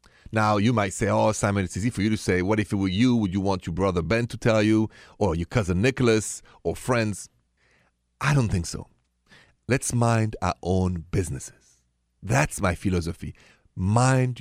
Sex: male